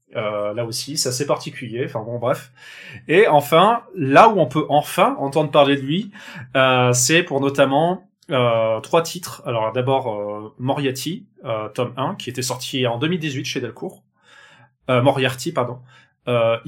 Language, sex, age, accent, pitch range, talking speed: French, male, 20-39, French, 125-145 Hz, 165 wpm